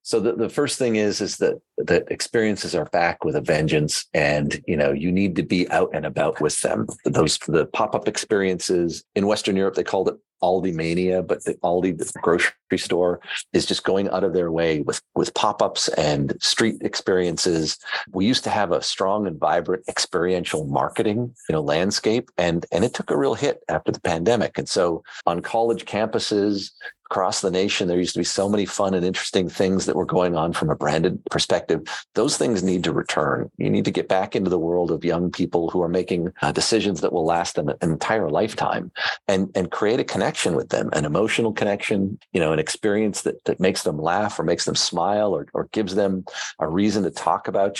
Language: English